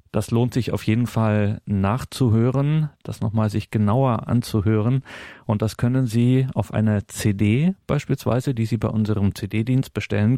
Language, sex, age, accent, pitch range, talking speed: German, male, 40-59, German, 100-120 Hz, 150 wpm